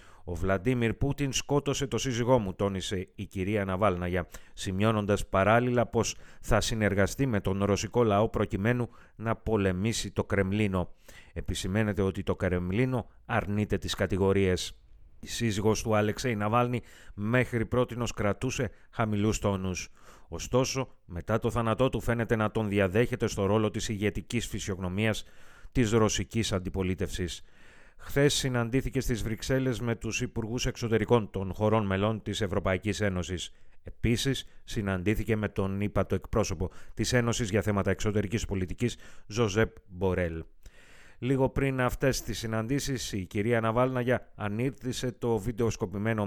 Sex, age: male, 30-49